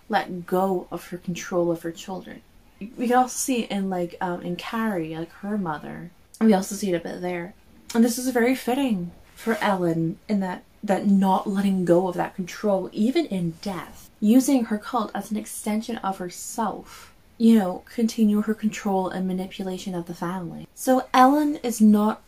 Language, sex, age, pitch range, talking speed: English, female, 20-39, 175-225 Hz, 185 wpm